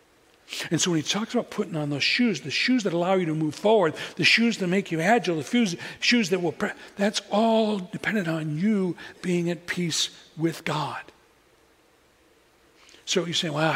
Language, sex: English, male